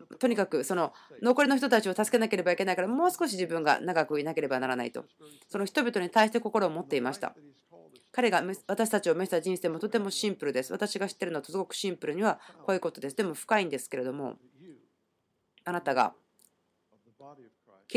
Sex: female